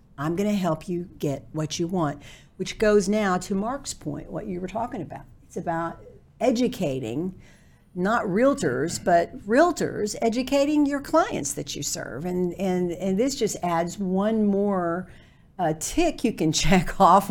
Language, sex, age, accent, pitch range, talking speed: English, female, 50-69, American, 165-205 Hz, 160 wpm